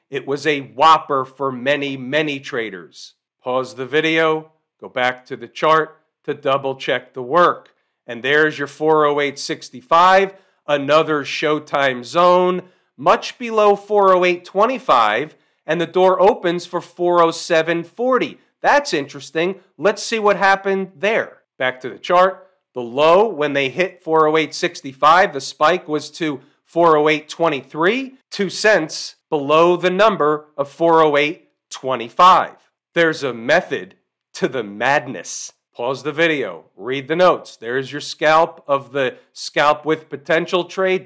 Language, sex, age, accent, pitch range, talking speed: English, male, 40-59, American, 140-180 Hz, 125 wpm